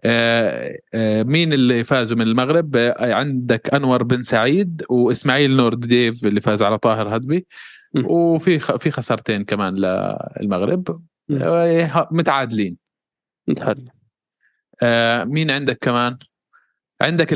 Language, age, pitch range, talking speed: Arabic, 20-39, 110-135 Hz, 95 wpm